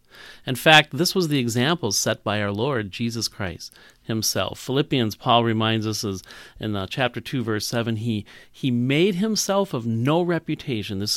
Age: 40-59